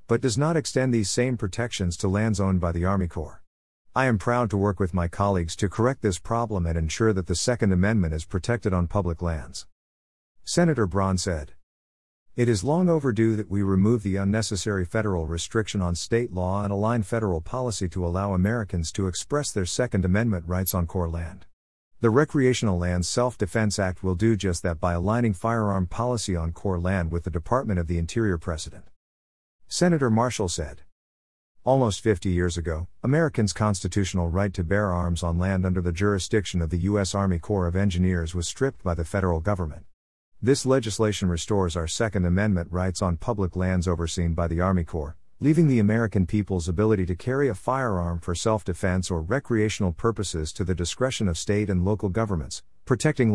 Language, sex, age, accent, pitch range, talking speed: English, male, 50-69, American, 85-110 Hz, 180 wpm